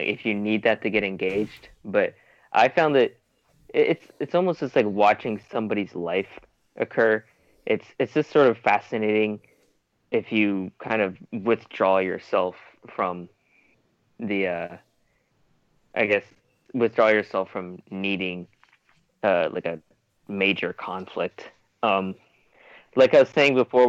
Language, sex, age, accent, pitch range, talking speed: English, male, 20-39, American, 100-120 Hz, 130 wpm